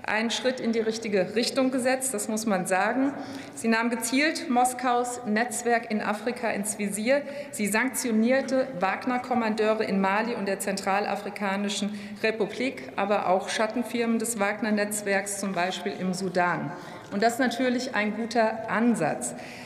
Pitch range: 200-240 Hz